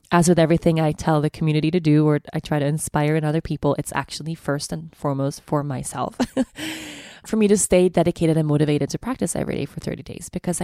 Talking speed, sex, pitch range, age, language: 220 wpm, female, 155-190 Hz, 20-39, English